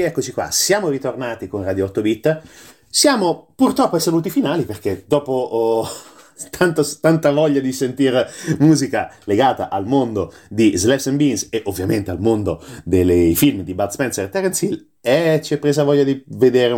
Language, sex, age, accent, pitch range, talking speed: Italian, male, 30-49, native, 100-140 Hz, 175 wpm